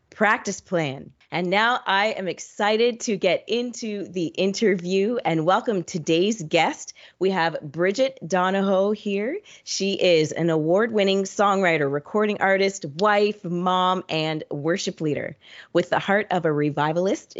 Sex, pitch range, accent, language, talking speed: female, 150-195 Hz, American, English, 135 wpm